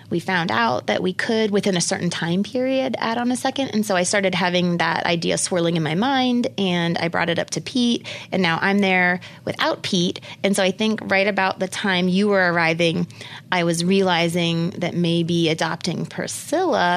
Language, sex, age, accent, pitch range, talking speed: English, female, 20-39, American, 170-200 Hz, 200 wpm